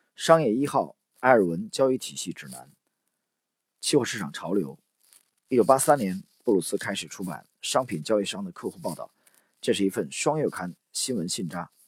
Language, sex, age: Chinese, male, 40-59